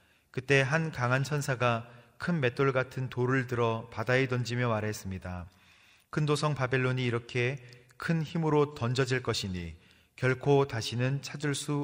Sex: male